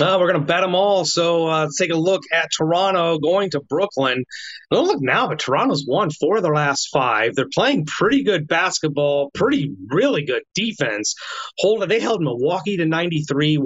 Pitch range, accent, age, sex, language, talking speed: 150-200 Hz, American, 30-49, male, English, 195 wpm